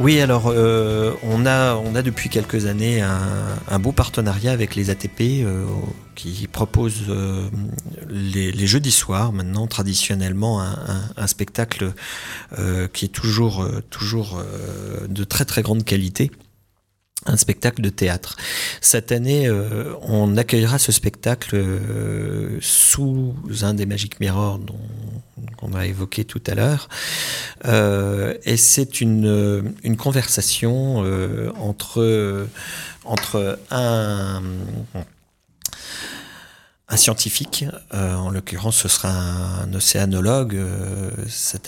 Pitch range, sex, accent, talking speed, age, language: 100-115 Hz, male, French, 130 wpm, 40-59, French